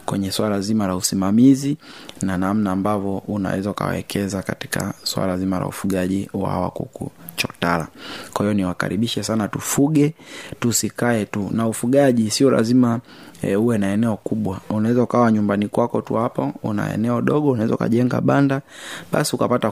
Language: Swahili